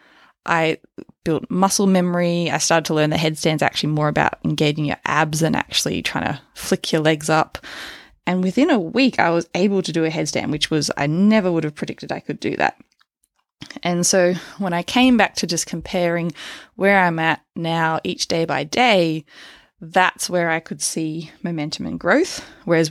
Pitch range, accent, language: 160-210 Hz, Australian, English